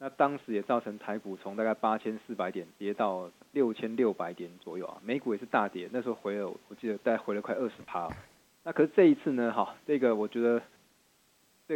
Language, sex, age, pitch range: Chinese, male, 20-39, 105-140 Hz